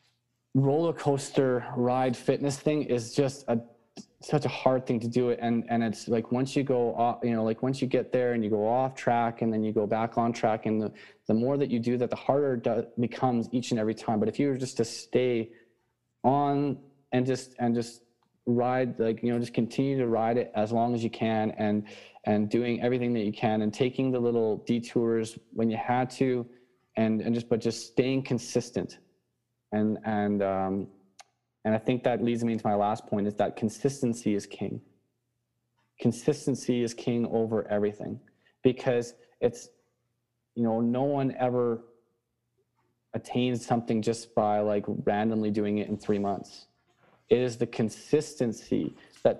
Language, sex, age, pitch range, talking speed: English, male, 20-39, 110-125 Hz, 185 wpm